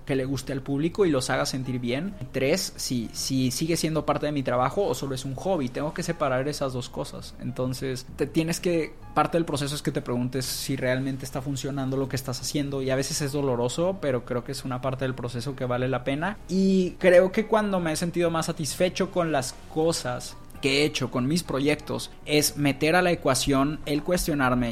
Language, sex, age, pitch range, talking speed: Spanish, male, 20-39, 130-170 Hz, 225 wpm